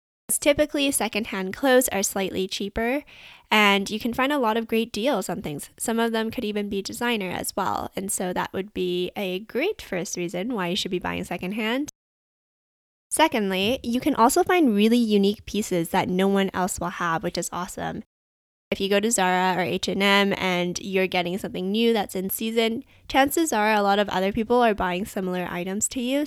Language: English